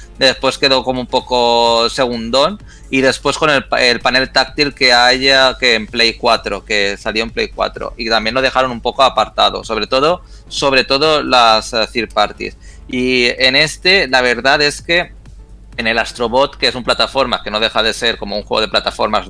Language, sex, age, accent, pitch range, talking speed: Spanish, male, 30-49, Spanish, 115-145 Hz, 185 wpm